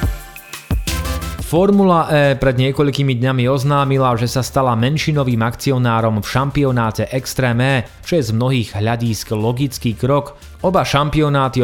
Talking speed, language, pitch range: 125 wpm, Slovak, 115-140 Hz